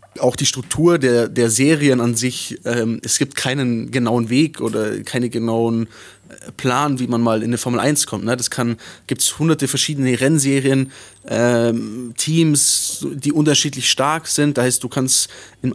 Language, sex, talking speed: German, male, 165 wpm